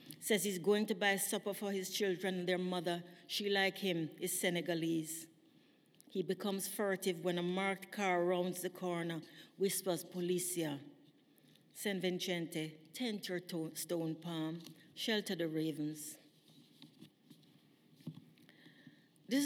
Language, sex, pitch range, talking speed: English, female, 175-215 Hz, 120 wpm